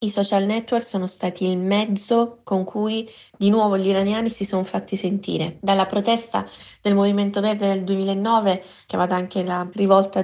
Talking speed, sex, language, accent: 165 wpm, female, Italian, native